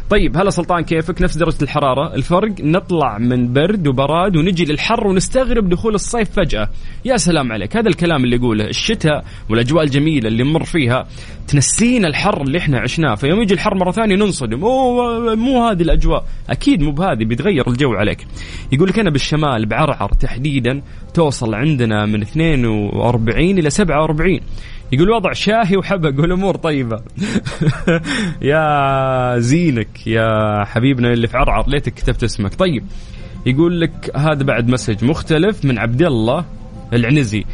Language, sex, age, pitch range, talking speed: English, male, 20-39, 115-170 Hz, 145 wpm